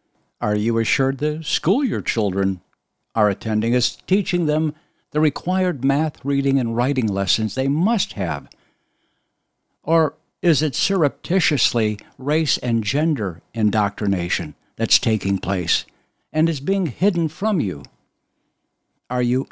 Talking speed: 125 wpm